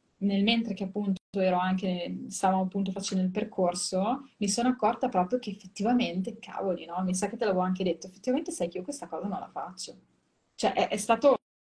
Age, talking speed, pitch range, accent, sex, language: 20-39, 195 wpm, 185-230 Hz, native, female, Italian